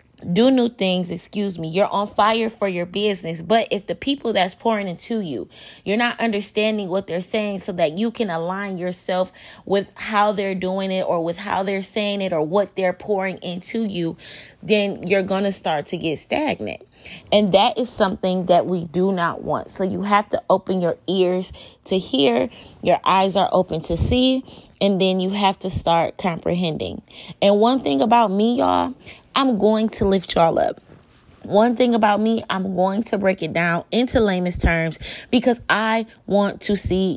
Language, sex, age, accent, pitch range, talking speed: English, female, 20-39, American, 180-220 Hz, 185 wpm